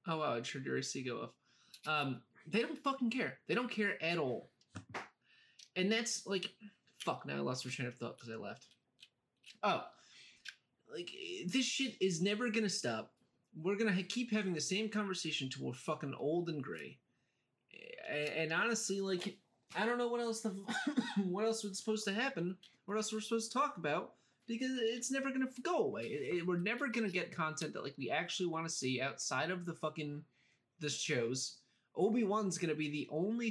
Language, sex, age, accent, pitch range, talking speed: English, male, 20-39, American, 150-215 Hz, 200 wpm